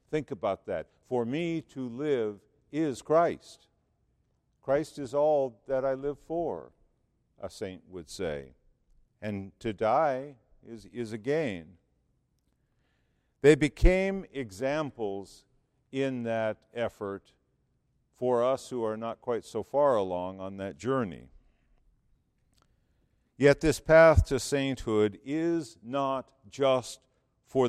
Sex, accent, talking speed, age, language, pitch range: male, American, 115 wpm, 50-69, English, 110-140 Hz